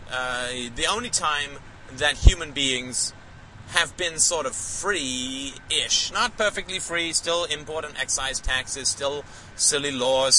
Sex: male